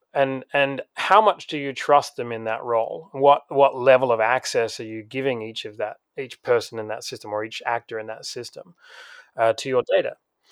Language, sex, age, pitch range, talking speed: English, male, 30-49, 125-170 Hz, 210 wpm